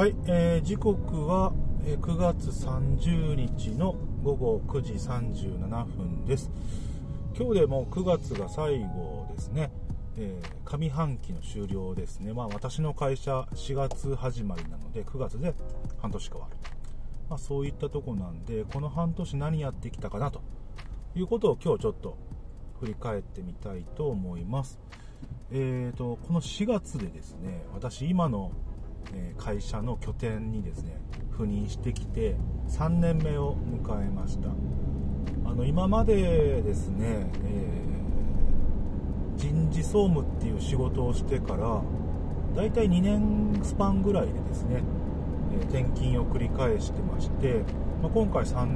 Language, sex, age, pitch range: Japanese, male, 40-59, 80-130 Hz